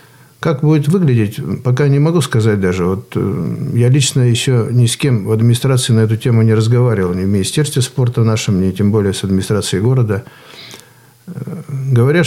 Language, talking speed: Russian, 165 wpm